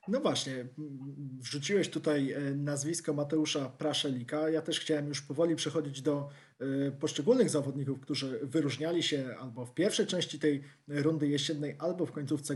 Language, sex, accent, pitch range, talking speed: Polish, male, native, 140-160 Hz, 140 wpm